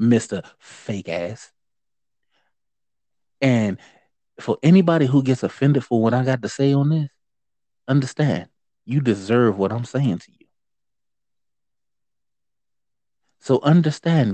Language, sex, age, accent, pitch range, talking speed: English, male, 30-49, American, 105-135 Hz, 115 wpm